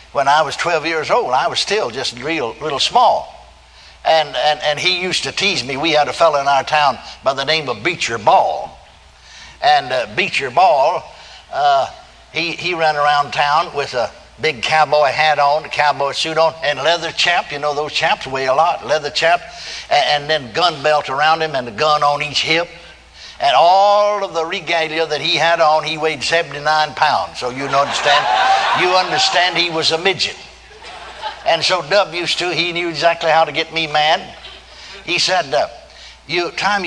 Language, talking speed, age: English, 195 wpm, 60-79